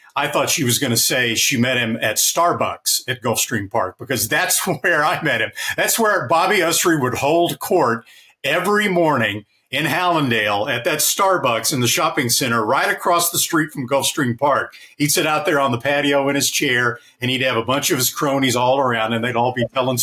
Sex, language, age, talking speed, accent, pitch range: male, English, 50-69, 215 wpm, American, 120-160 Hz